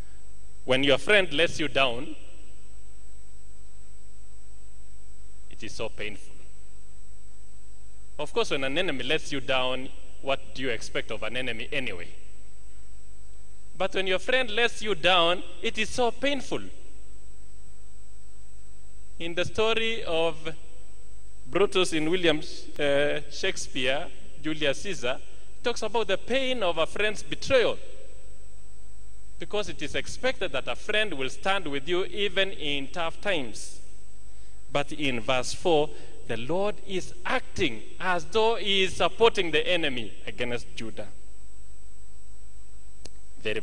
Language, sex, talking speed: English, male, 125 wpm